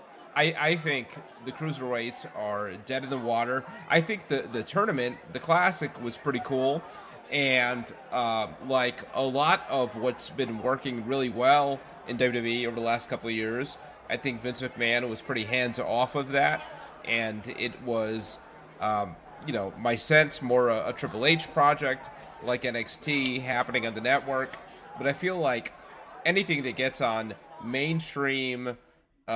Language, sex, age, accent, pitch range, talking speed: English, male, 30-49, American, 115-140 Hz, 155 wpm